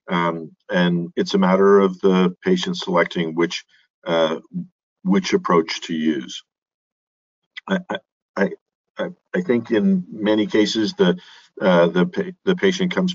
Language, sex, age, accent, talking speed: English, male, 50-69, American, 135 wpm